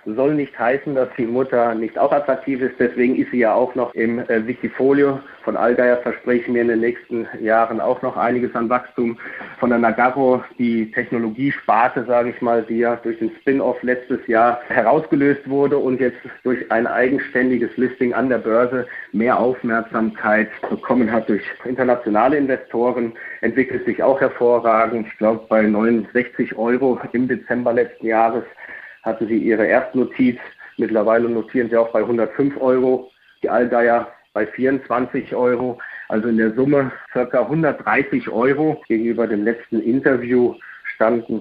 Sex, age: male, 30-49